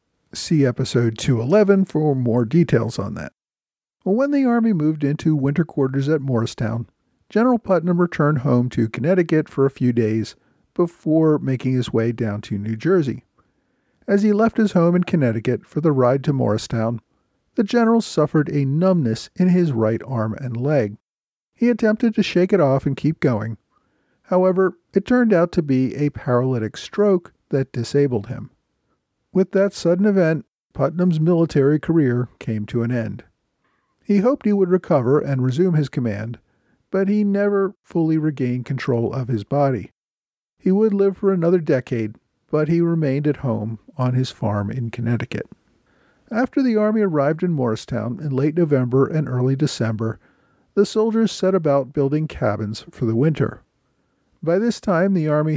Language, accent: English, American